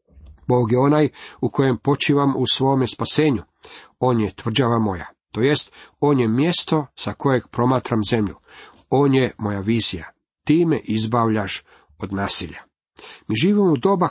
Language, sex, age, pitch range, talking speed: Croatian, male, 50-69, 110-145 Hz, 145 wpm